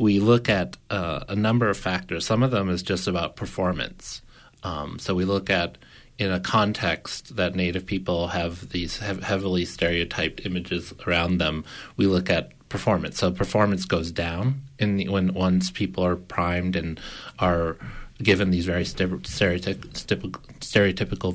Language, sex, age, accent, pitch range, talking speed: English, male, 30-49, American, 90-100 Hz, 160 wpm